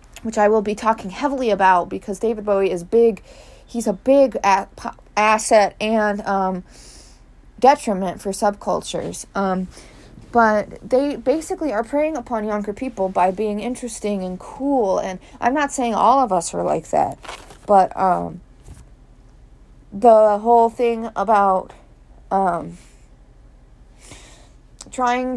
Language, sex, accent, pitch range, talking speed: English, female, American, 195-245 Hz, 125 wpm